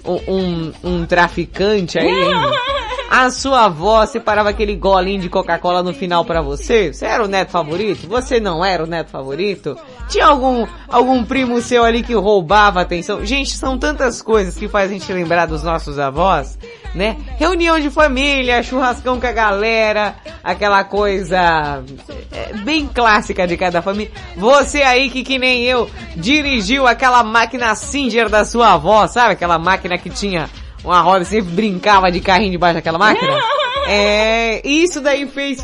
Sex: female